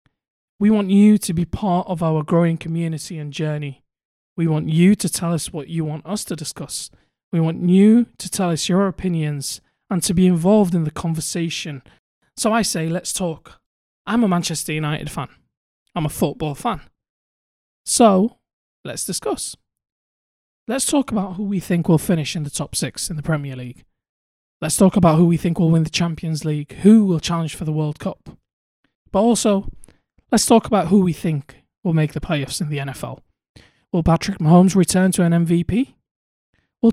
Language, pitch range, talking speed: English, 155-195 Hz, 185 wpm